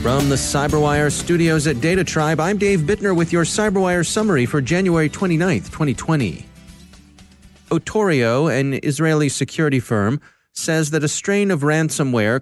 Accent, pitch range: American, 120-160 Hz